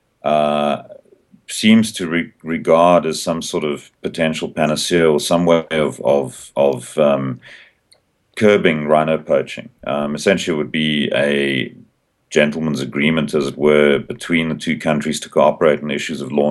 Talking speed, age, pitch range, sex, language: 155 wpm, 40-59, 70-80 Hz, male, English